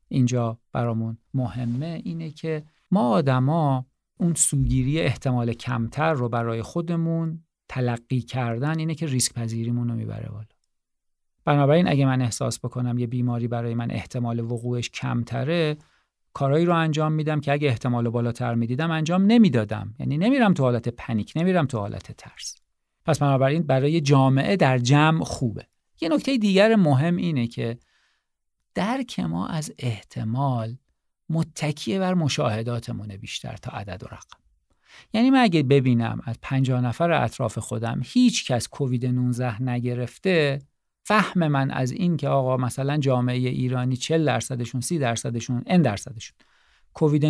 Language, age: Persian, 50-69